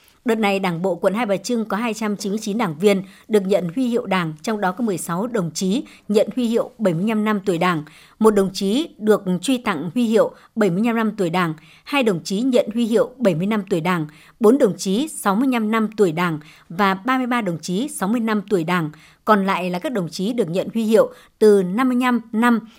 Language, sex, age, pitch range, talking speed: Vietnamese, male, 60-79, 190-235 Hz, 210 wpm